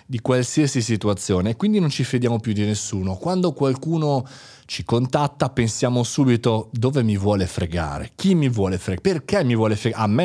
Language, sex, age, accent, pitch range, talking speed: Italian, male, 30-49, native, 105-150 Hz, 180 wpm